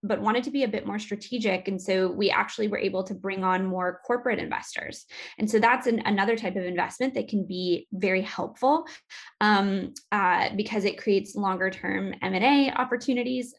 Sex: female